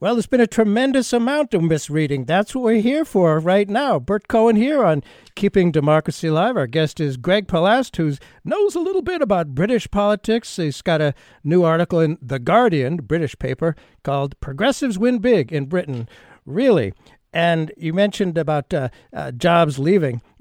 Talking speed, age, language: 175 wpm, 60-79, English